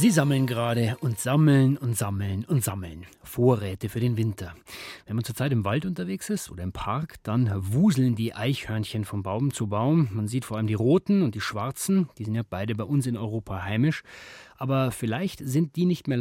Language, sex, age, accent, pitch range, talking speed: German, male, 30-49, German, 110-150 Hz, 205 wpm